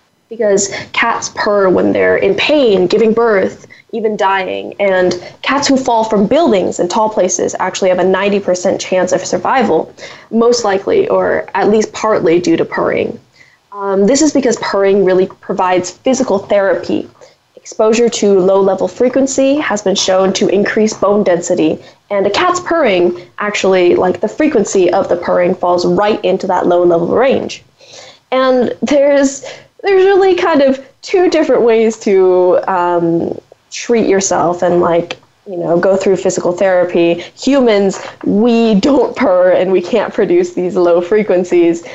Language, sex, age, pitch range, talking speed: English, female, 10-29, 180-230 Hz, 150 wpm